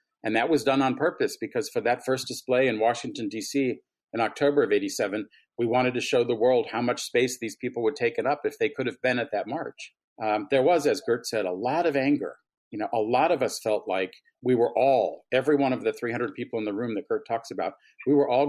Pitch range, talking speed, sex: 120-150 Hz, 255 wpm, male